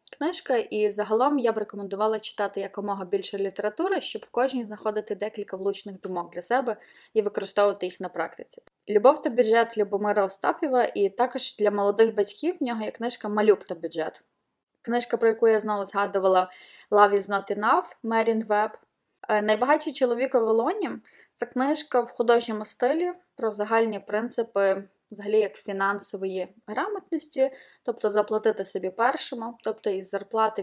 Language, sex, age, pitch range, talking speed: Ukrainian, female, 20-39, 200-245 Hz, 150 wpm